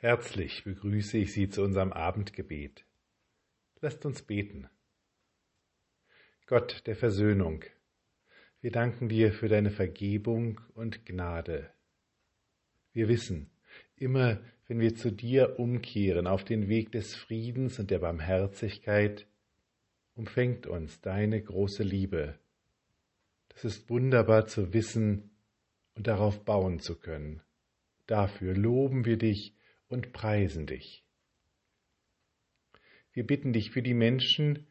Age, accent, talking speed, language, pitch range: 50-69, German, 110 wpm, German, 100-115 Hz